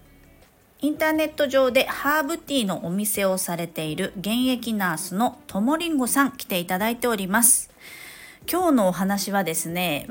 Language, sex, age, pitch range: Japanese, female, 40-59, 170-245 Hz